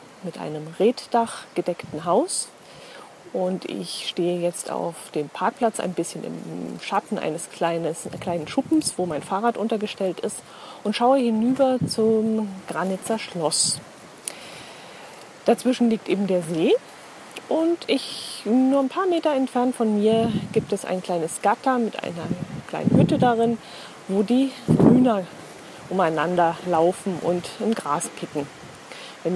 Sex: female